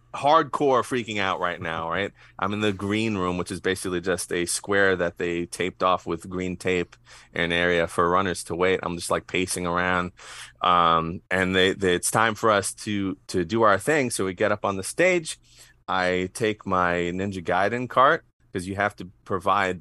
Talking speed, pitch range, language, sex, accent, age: 200 wpm, 90-105 Hz, English, male, American, 30-49